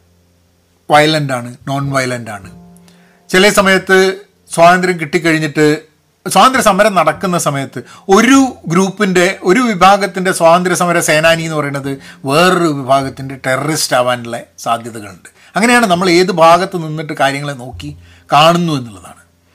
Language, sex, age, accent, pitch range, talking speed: Malayalam, male, 30-49, native, 135-205 Hz, 105 wpm